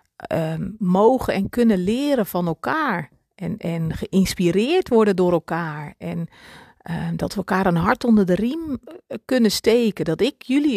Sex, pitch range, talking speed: female, 195-260 Hz, 155 wpm